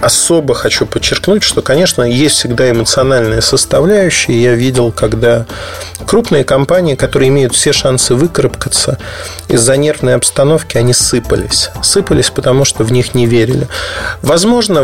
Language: Russian